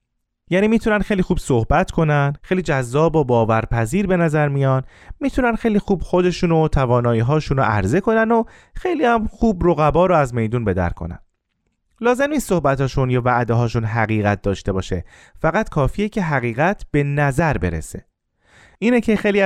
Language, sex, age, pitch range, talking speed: Persian, male, 30-49, 115-175 Hz, 155 wpm